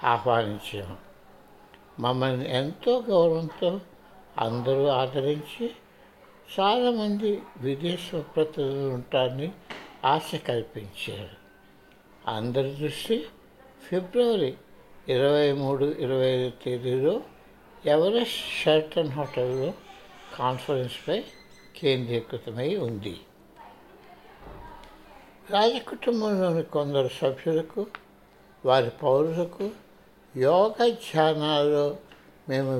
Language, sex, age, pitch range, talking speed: Telugu, male, 60-79, 130-185 Hz, 60 wpm